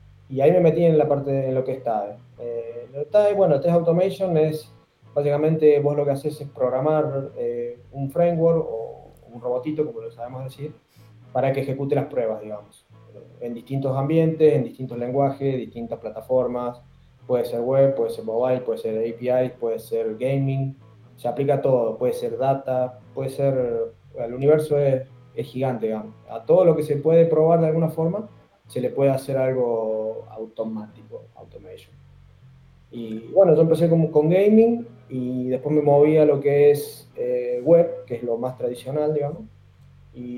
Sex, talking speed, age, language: male, 175 wpm, 20-39, Spanish